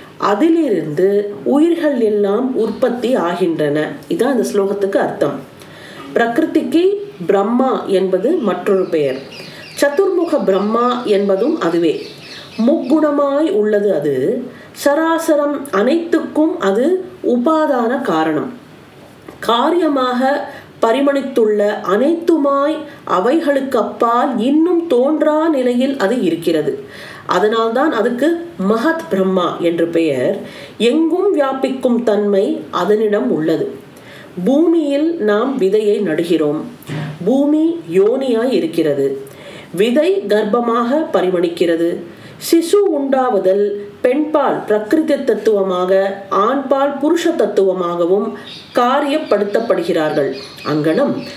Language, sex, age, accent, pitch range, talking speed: Tamil, female, 40-59, native, 195-300 Hz, 50 wpm